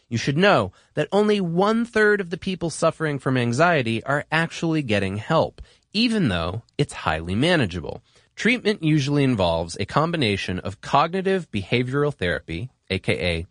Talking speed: 140 wpm